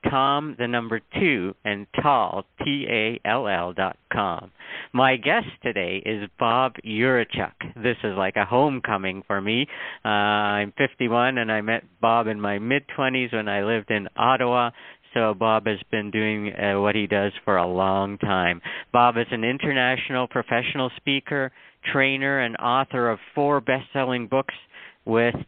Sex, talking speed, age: male, 150 wpm, 50-69